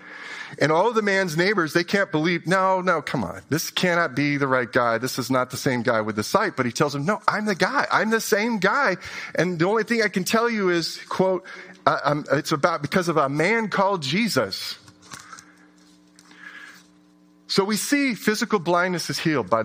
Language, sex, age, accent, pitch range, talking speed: English, male, 40-59, American, 115-180 Hz, 205 wpm